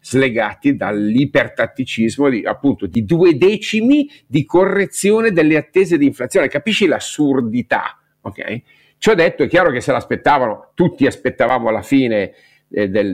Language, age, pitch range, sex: Italian, 50-69, 105-135 Hz, male